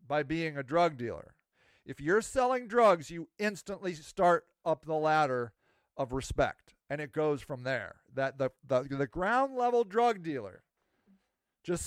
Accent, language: American, English